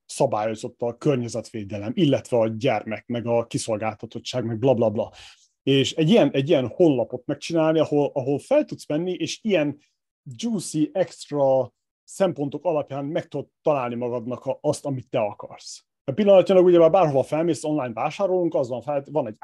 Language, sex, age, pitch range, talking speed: Hungarian, male, 30-49, 125-175 Hz, 155 wpm